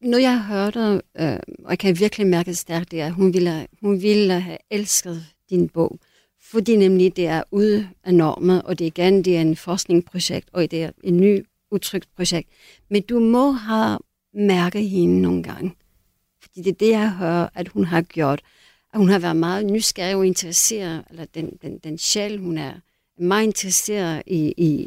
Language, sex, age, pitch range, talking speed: Danish, female, 50-69, 175-210 Hz, 195 wpm